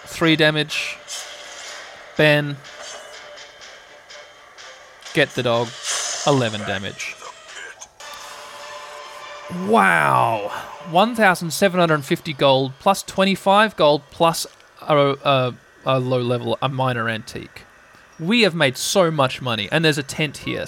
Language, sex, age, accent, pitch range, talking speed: English, male, 20-39, Australian, 135-185 Hz, 95 wpm